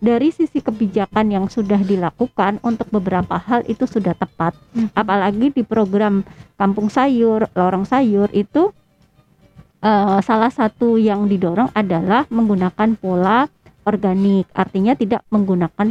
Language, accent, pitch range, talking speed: Indonesian, American, 190-245 Hz, 120 wpm